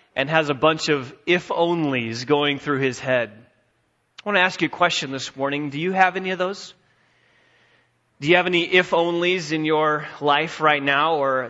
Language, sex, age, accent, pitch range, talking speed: English, male, 30-49, American, 140-170 Hz, 190 wpm